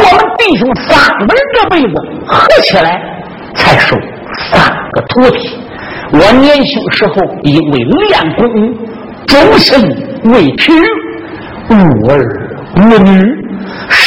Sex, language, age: male, Chinese, 60-79